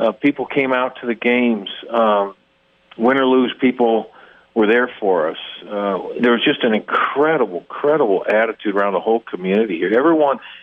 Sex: male